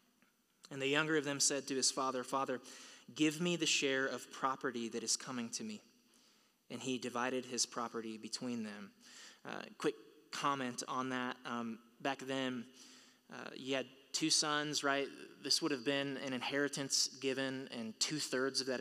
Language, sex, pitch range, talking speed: English, male, 125-150 Hz, 170 wpm